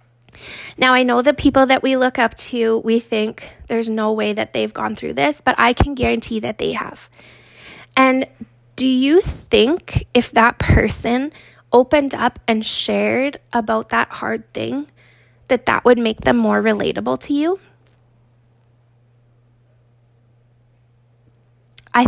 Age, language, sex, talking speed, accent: 20-39, English, female, 140 wpm, American